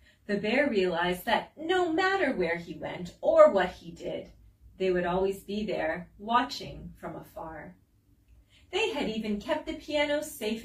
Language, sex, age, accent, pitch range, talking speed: English, female, 30-49, American, 180-285 Hz, 160 wpm